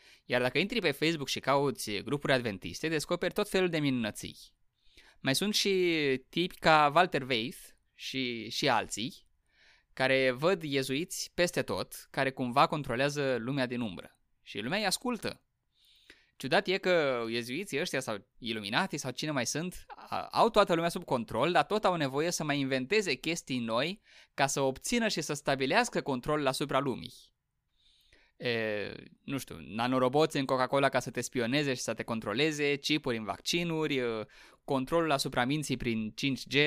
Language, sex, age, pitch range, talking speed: Romanian, male, 20-39, 125-170 Hz, 155 wpm